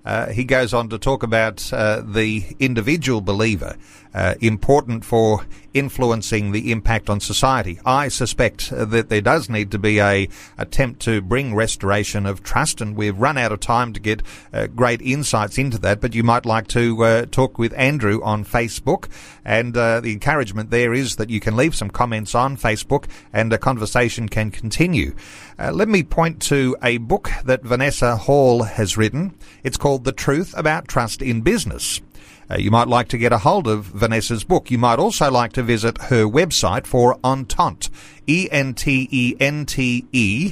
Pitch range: 110-135 Hz